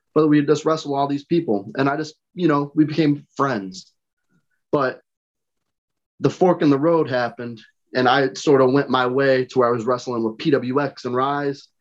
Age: 20-39